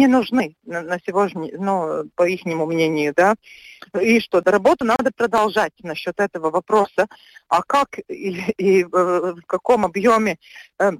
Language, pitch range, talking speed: Russian, 195-245 Hz, 130 wpm